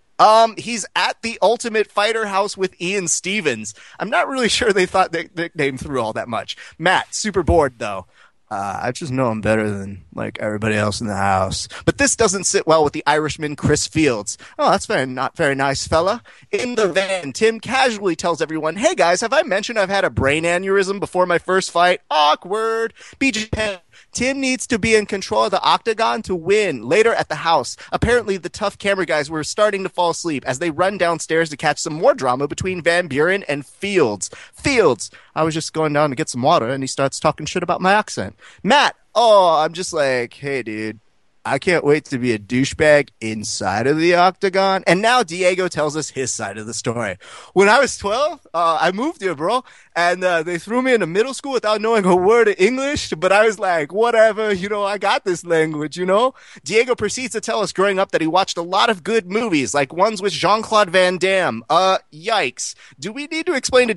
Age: 30-49